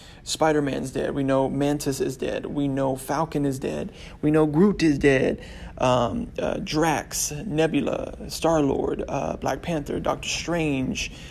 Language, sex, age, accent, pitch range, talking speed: English, male, 20-39, American, 135-160 Hz, 140 wpm